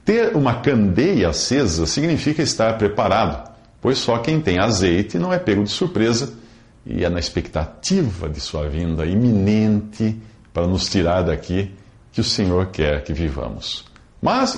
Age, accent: 50-69, Brazilian